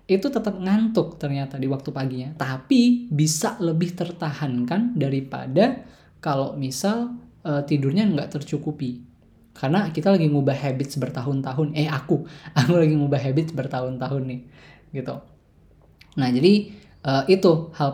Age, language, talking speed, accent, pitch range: 20-39, Indonesian, 125 wpm, native, 135-170 Hz